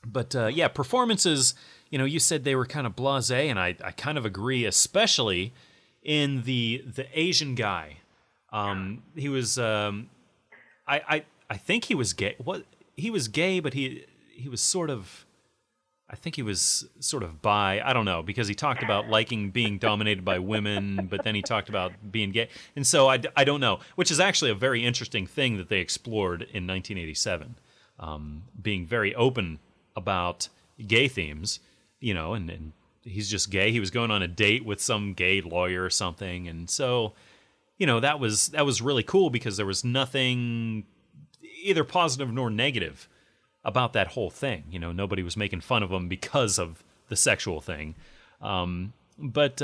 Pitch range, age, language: 95-135 Hz, 30-49, English